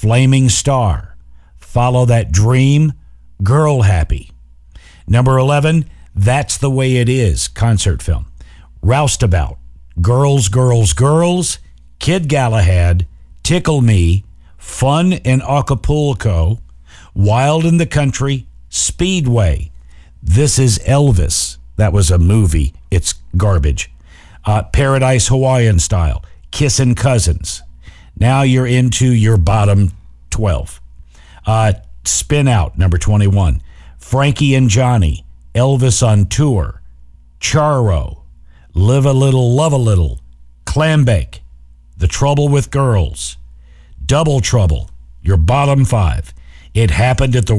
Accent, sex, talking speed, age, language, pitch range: American, male, 110 wpm, 50-69, English, 80-130 Hz